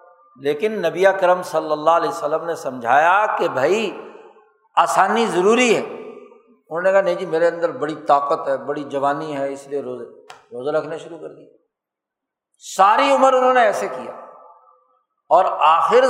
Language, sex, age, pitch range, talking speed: Urdu, male, 60-79, 175-260 Hz, 160 wpm